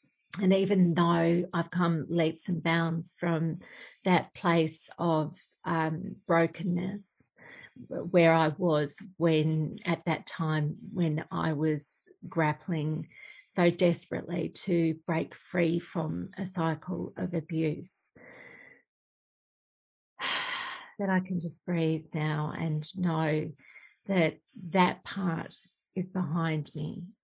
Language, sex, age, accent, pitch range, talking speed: English, female, 40-59, Australian, 160-185 Hz, 110 wpm